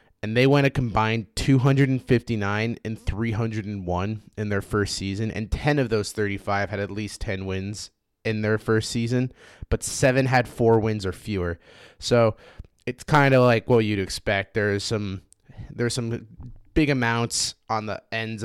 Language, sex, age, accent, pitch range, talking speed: English, male, 20-39, American, 100-125 Hz, 185 wpm